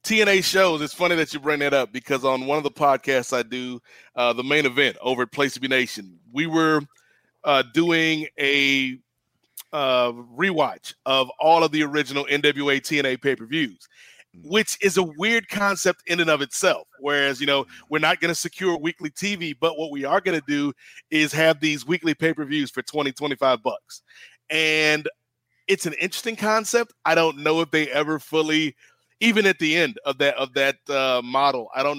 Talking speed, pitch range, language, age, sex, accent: 190 wpm, 140-185 Hz, English, 30-49, male, American